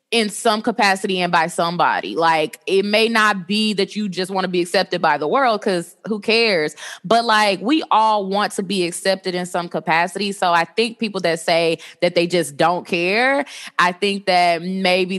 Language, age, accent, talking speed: English, 20-39, American, 200 wpm